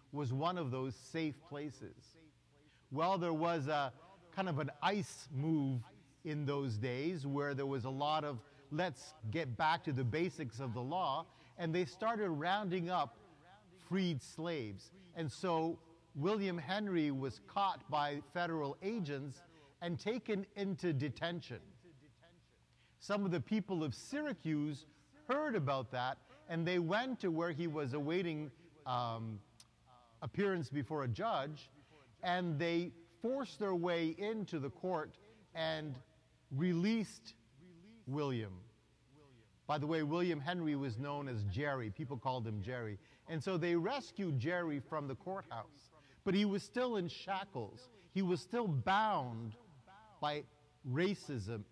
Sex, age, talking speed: male, 50-69, 140 wpm